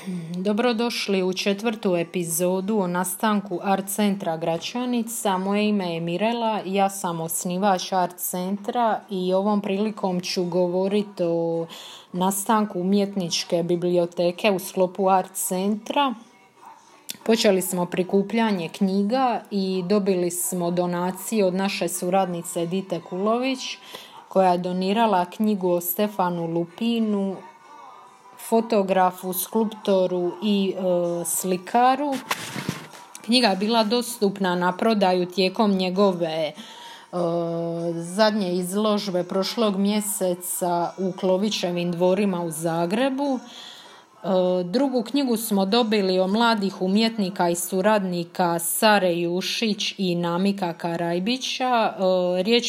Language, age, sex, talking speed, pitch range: Croatian, 30-49, female, 100 wpm, 180-215 Hz